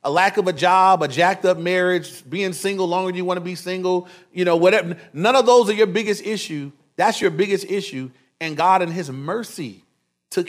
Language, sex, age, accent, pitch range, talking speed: English, male, 30-49, American, 175-215 Hz, 215 wpm